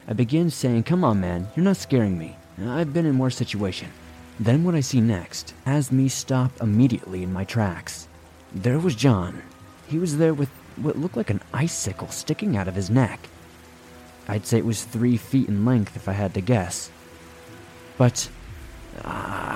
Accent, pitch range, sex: American, 90-130 Hz, male